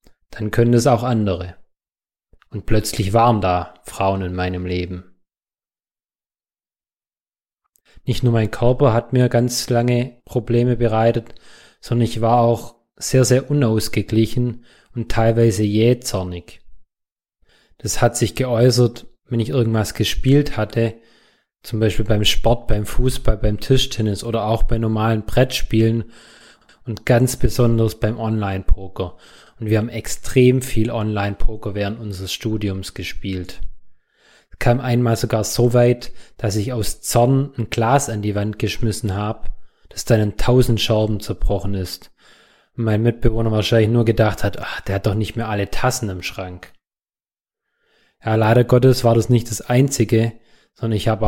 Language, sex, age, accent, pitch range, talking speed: German, male, 20-39, German, 105-120 Hz, 145 wpm